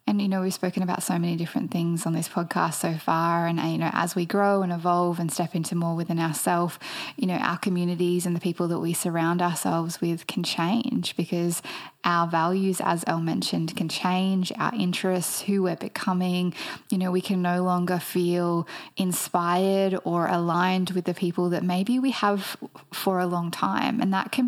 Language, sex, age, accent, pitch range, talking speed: English, female, 10-29, Australian, 175-190 Hz, 195 wpm